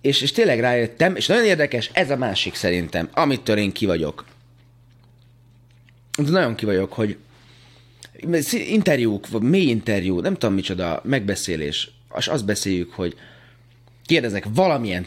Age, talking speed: 30-49, 130 wpm